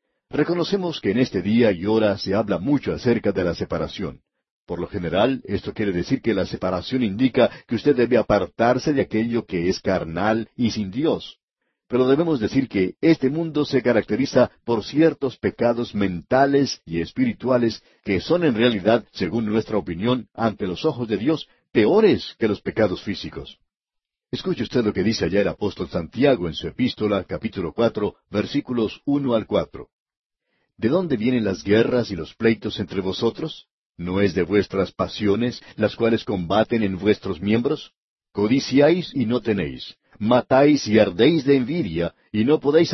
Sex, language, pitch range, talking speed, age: male, Spanish, 105-135 Hz, 165 wpm, 60-79